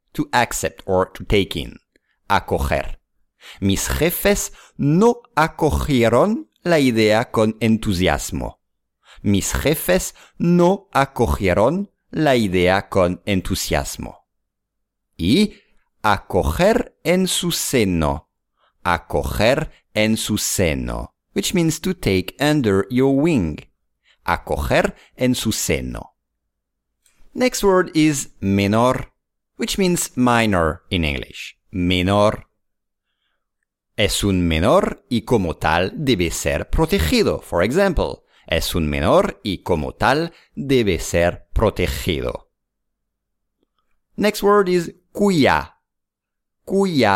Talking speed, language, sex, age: 100 wpm, English, male, 50-69